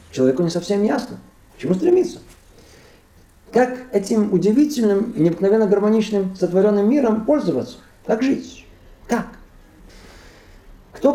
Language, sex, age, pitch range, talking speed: Russian, male, 50-69, 155-220 Hz, 110 wpm